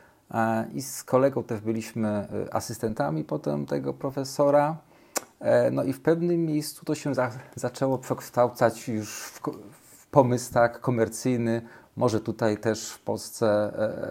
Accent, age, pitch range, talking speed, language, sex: native, 40-59, 110-125 Hz, 120 wpm, Polish, male